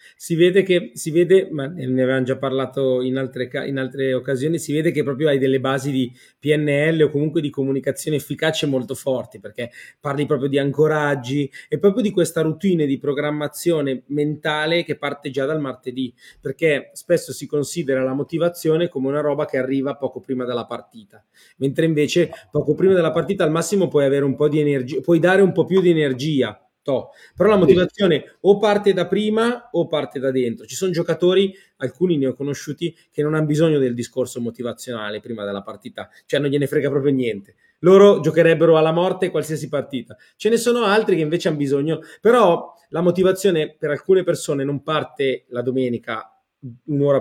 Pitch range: 135-170 Hz